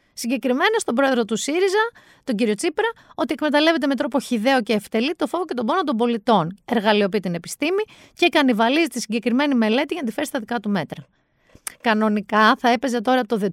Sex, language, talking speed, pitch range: female, Greek, 185 wpm, 205-280 Hz